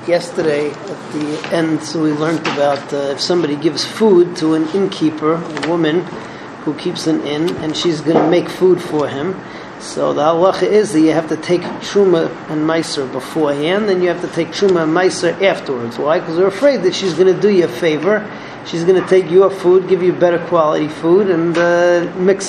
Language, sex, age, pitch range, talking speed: English, male, 40-59, 160-185 Hz, 210 wpm